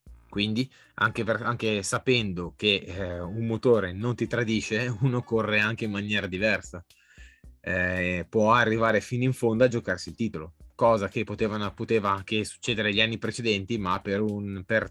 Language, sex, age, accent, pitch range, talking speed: Italian, male, 20-39, native, 95-115 Hz, 155 wpm